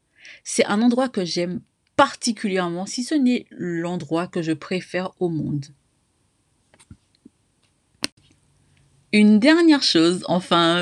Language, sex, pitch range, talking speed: French, female, 150-210 Hz, 105 wpm